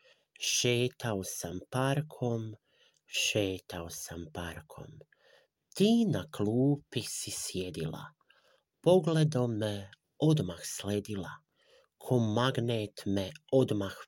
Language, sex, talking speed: Croatian, male, 80 wpm